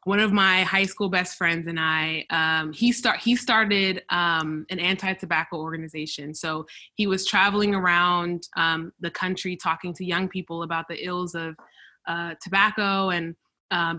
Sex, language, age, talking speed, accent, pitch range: female, English, 20-39, 165 wpm, American, 170-195 Hz